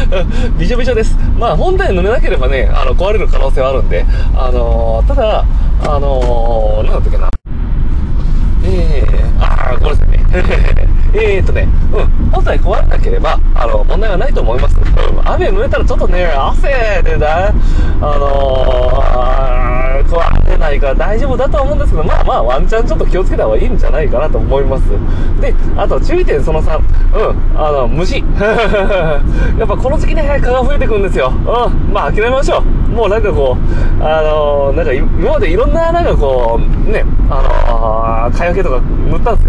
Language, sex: Japanese, male